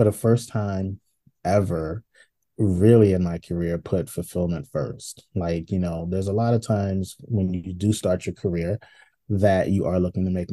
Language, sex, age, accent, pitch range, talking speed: English, male, 30-49, American, 90-115 Hz, 180 wpm